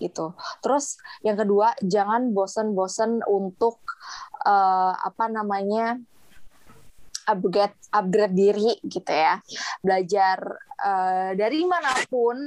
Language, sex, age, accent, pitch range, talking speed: English, female, 20-39, Indonesian, 200-240 Hz, 85 wpm